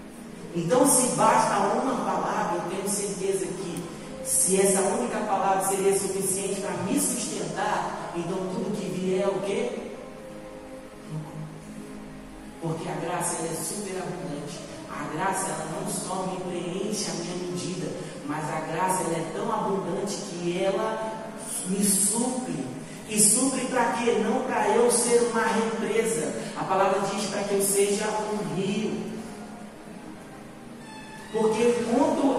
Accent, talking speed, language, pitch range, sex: Brazilian, 135 wpm, Portuguese, 195-235 Hz, male